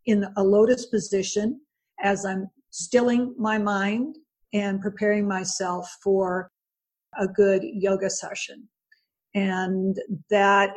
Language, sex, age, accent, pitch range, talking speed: English, female, 50-69, American, 190-230 Hz, 105 wpm